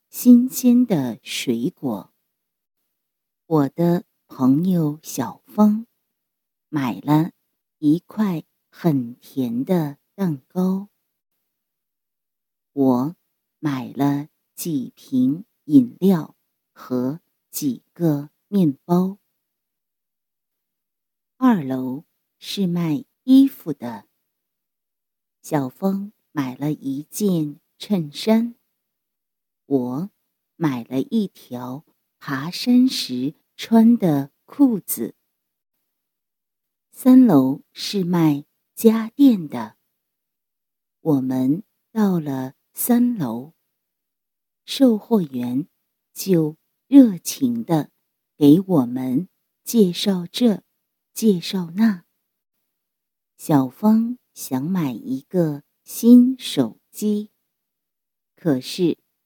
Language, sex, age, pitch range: English, female, 50-69, 145-225 Hz